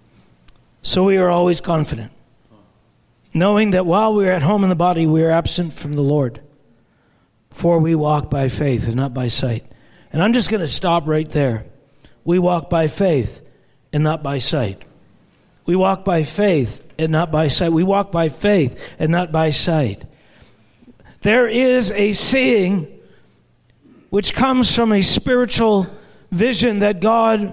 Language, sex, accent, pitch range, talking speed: English, male, American, 170-245 Hz, 160 wpm